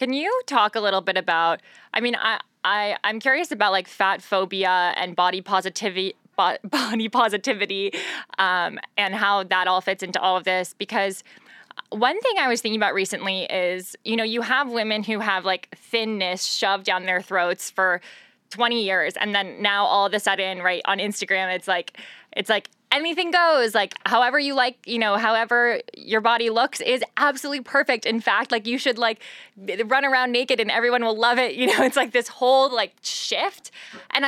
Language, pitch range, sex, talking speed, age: English, 190-245 Hz, female, 190 wpm, 20-39